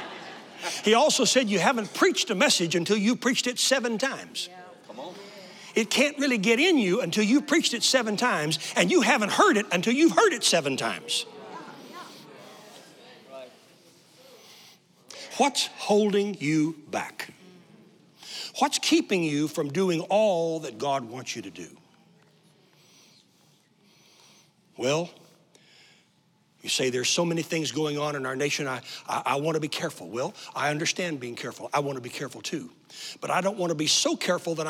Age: 60-79